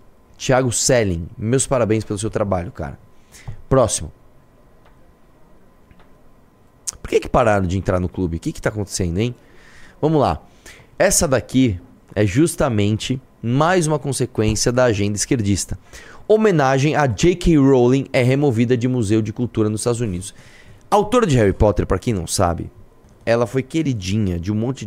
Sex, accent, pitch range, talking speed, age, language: male, Brazilian, 105-135 Hz, 150 wpm, 20-39, Portuguese